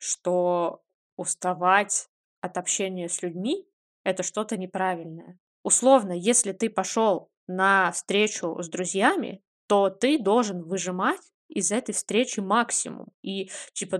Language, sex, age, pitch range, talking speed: Russian, female, 20-39, 190-225 Hz, 120 wpm